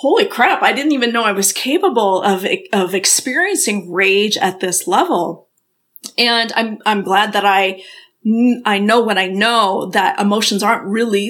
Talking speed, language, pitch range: 165 wpm, English, 195-245 Hz